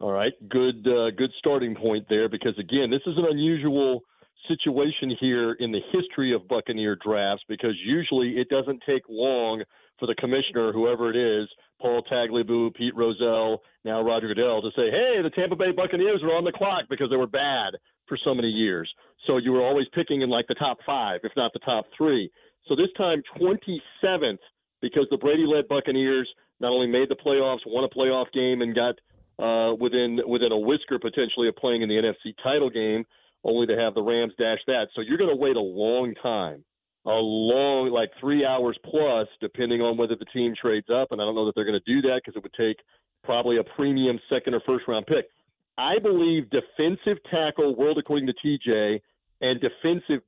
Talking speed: 200 wpm